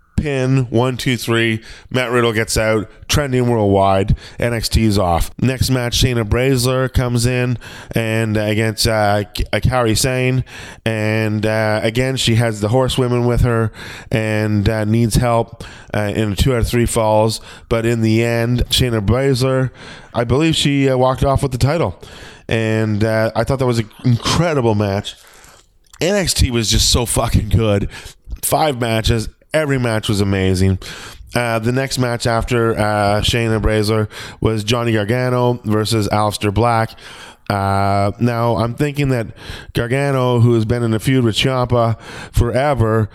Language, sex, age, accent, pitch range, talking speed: English, male, 20-39, American, 110-130 Hz, 155 wpm